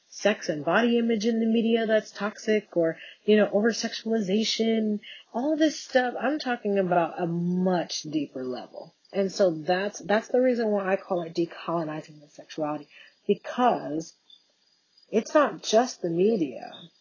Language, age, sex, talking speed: English, 40-59, female, 145 wpm